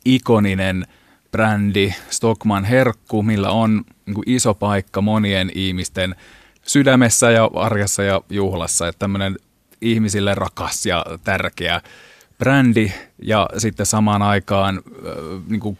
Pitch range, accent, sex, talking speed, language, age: 95-110 Hz, native, male, 105 wpm, Finnish, 30-49